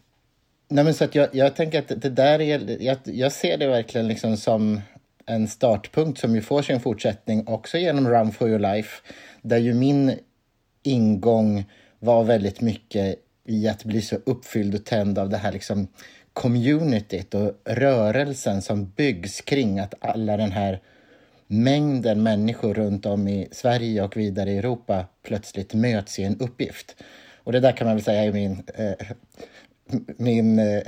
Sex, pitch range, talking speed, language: male, 105-125 Hz, 155 wpm, Swedish